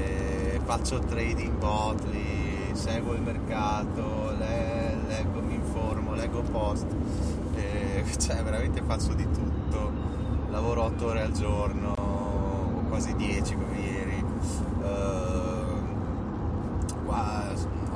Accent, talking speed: native, 100 wpm